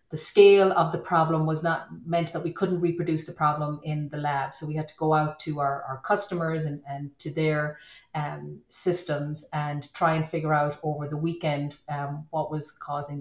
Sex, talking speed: female, 205 wpm